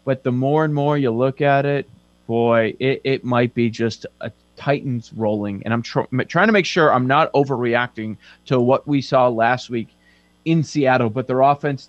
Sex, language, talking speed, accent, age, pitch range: male, English, 190 wpm, American, 30-49, 115-150 Hz